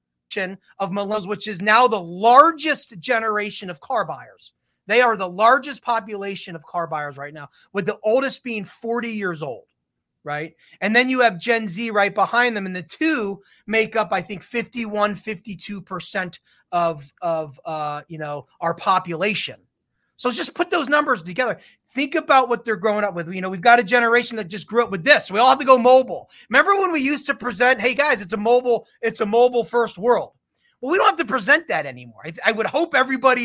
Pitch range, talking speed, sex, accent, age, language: 170-240 Hz, 210 wpm, male, American, 30-49, English